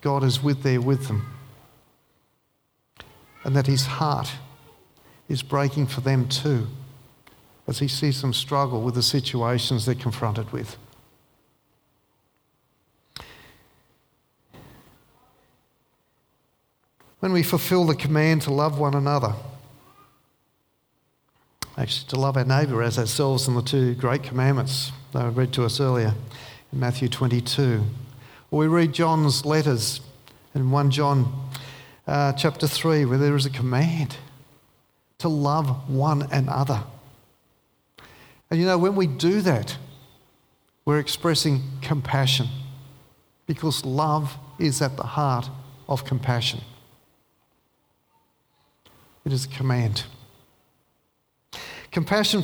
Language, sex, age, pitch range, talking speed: English, male, 50-69, 130-145 Hz, 110 wpm